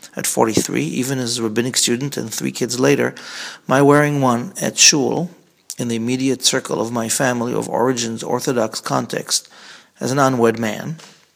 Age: 40-59